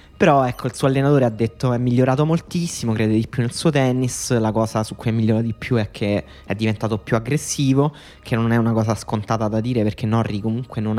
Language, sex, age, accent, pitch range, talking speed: Italian, male, 20-39, native, 105-125 Hz, 230 wpm